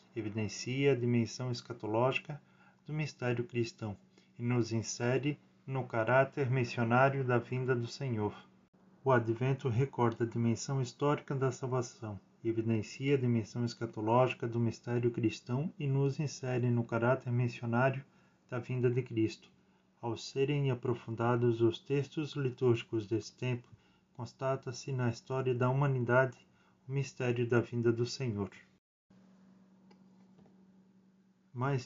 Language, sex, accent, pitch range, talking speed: Portuguese, male, Brazilian, 115-140 Hz, 115 wpm